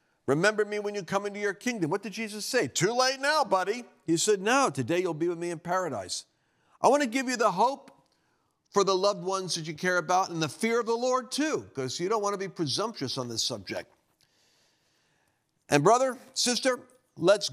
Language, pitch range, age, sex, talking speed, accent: English, 165-230 Hz, 50-69, male, 210 wpm, American